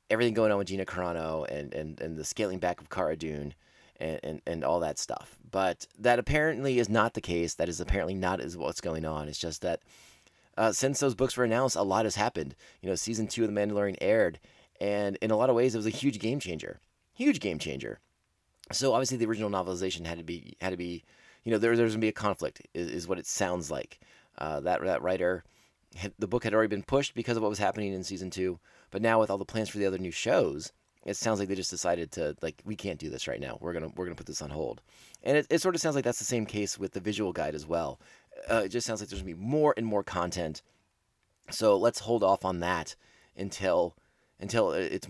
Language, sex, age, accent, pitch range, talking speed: English, male, 30-49, American, 90-115 Hz, 250 wpm